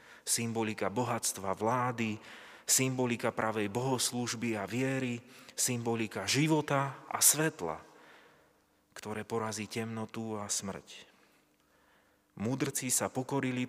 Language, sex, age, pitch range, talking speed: Slovak, male, 30-49, 110-130 Hz, 90 wpm